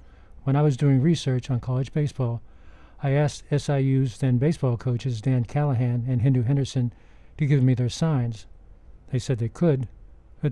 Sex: male